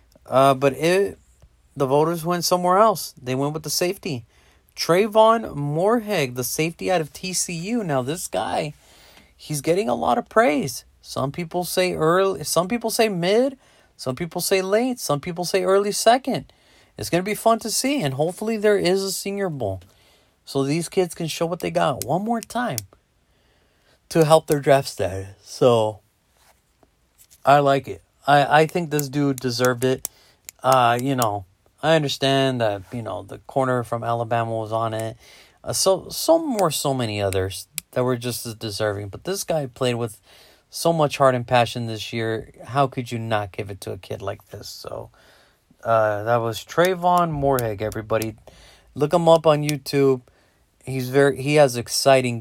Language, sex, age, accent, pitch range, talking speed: English, male, 30-49, American, 115-175 Hz, 175 wpm